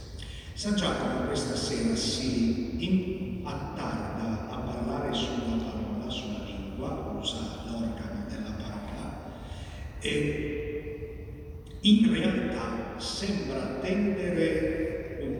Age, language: 50-69, Italian